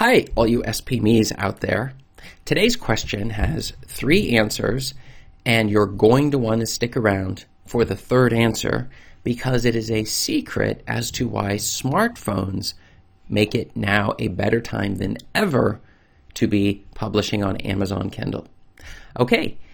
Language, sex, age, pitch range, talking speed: English, male, 40-59, 105-130 Hz, 145 wpm